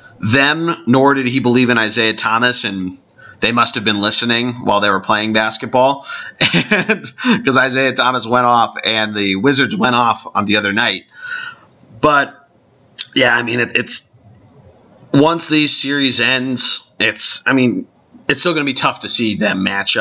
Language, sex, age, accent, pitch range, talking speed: English, male, 30-49, American, 110-140 Hz, 170 wpm